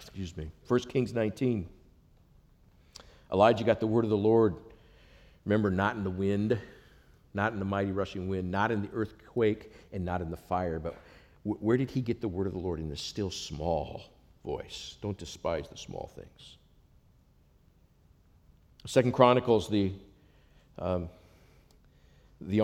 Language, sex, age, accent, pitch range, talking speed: English, male, 50-69, American, 90-125 Hz, 155 wpm